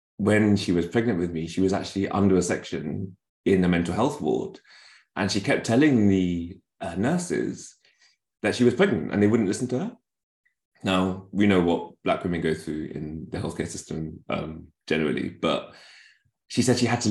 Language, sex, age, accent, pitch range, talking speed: English, male, 20-39, British, 85-100 Hz, 190 wpm